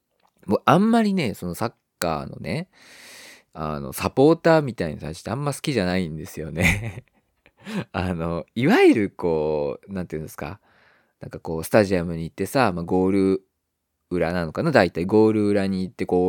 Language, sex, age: Japanese, male, 20-39